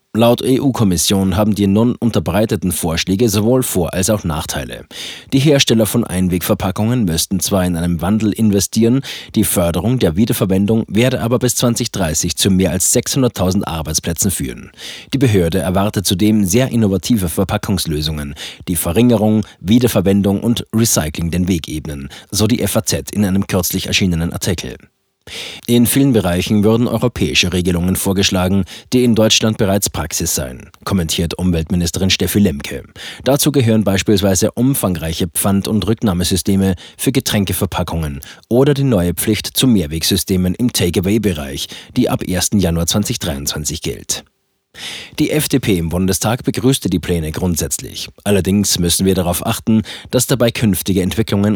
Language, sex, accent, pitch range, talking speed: German, male, German, 90-110 Hz, 135 wpm